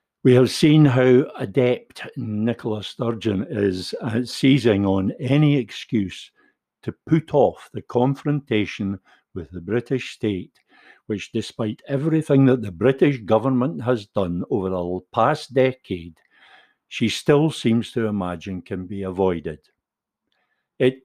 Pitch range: 95-125 Hz